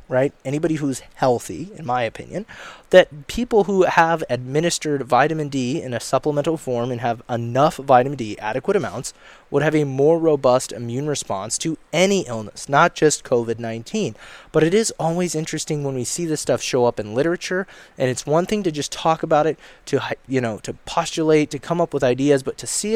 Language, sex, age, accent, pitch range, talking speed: English, male, 20-39, American, 120-155 Hz, 195 wpm